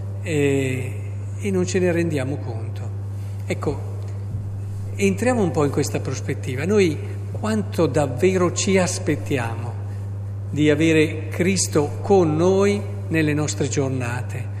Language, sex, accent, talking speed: Italian, male, native, 105 wpm